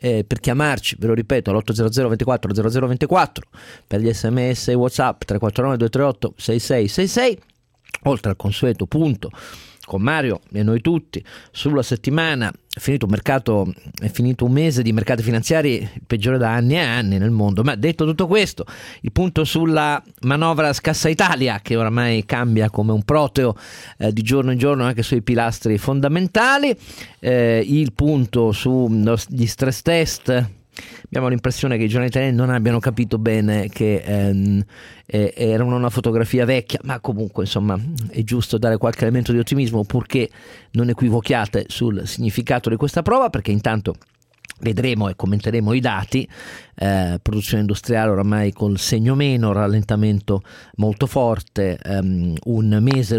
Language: Italian